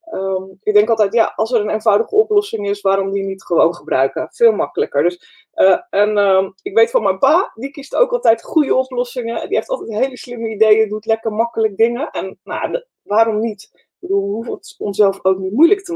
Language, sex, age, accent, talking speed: Dutch, female, 20-39, Dutch, 210 wpm